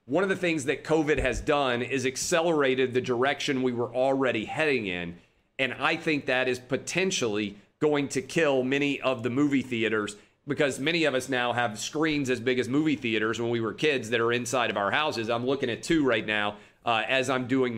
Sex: male